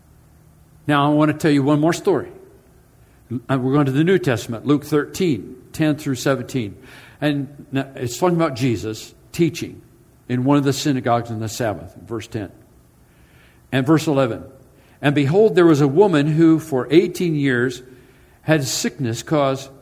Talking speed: 155 wpm